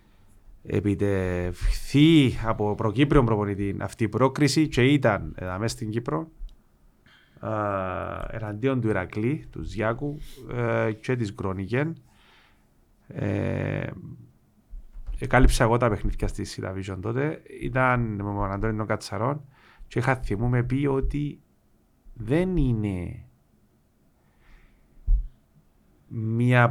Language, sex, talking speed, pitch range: Greek, male, 90 wpm, 100-125 Hz